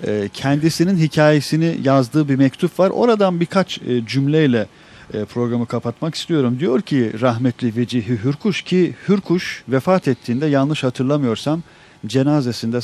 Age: 40-59